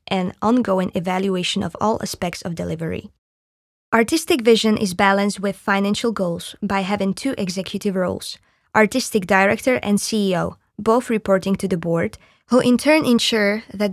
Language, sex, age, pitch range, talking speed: Slovak, female, 20-39, 190-235 Hz, 145 wpm